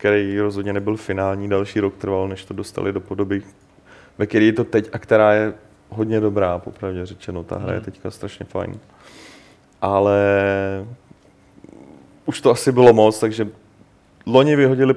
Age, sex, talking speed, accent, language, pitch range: 30-49, male, 155 wpm, native, Czech, 100-115 Hz